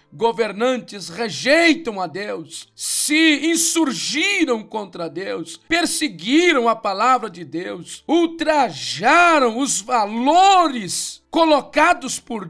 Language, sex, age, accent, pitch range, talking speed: Portuguese, male, 50-69, Brazilian, 225-315 Hz, 85 wpm